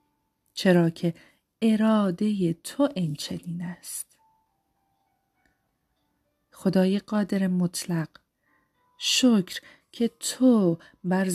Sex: female